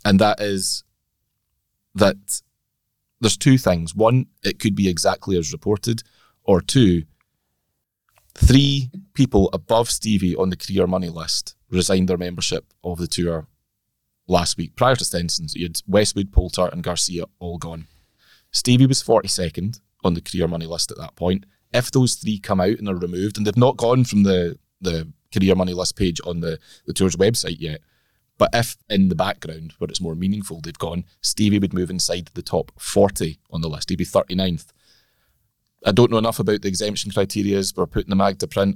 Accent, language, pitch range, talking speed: British, English, 85-105 Hz, 185 wpm